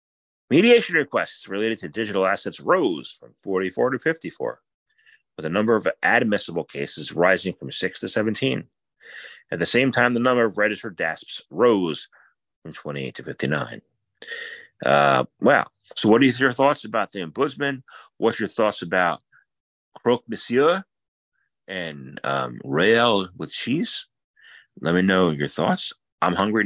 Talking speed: 145 wpm